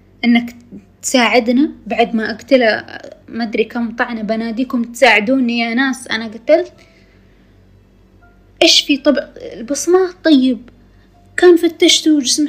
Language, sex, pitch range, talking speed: Arabic, female, 210-275 Hz, 110 wpm